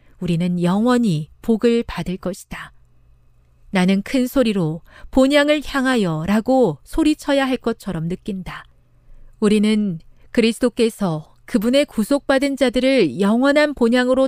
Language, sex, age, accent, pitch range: Korean, female, 40-59, native, 160-240 Hz